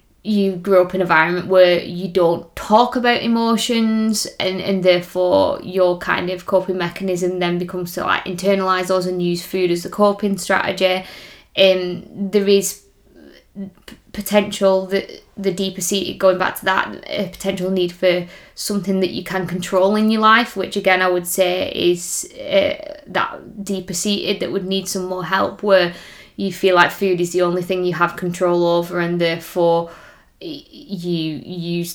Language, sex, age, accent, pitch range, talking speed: English, female, 20-39, British, 175-195 Hz, 170 wpm